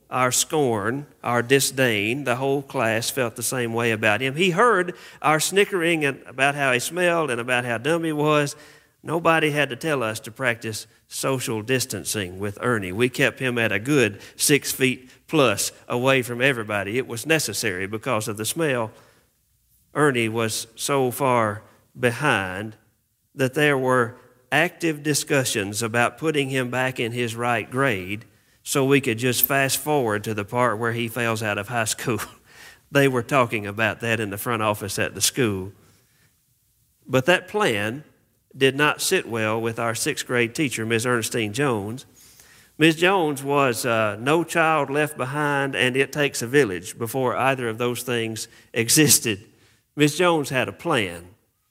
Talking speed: 160 wpm